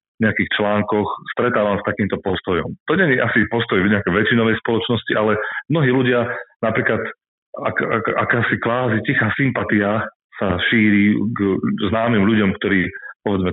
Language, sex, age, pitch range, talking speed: Slovak, male, 40-59, 90-110 Hz, 150 wpm